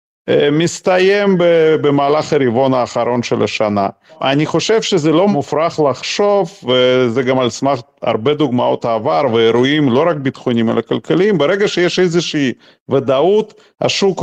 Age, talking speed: 40-59, 125 wpm